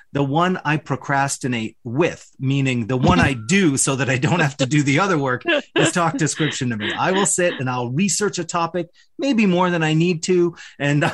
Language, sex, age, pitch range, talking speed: English, male, 30-49, 130-175 Hz, 215 wpm